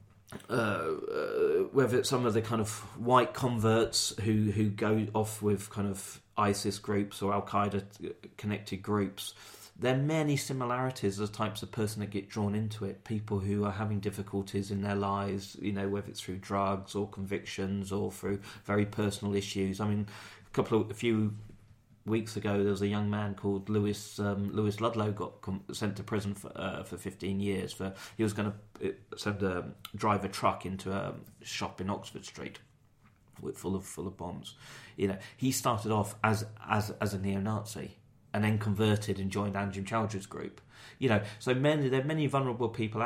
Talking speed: 190 wpm